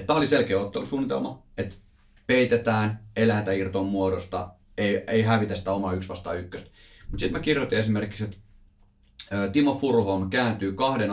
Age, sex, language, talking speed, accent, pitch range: 30-49, male, Finnish, 145 wpm, native, 95-115 Hz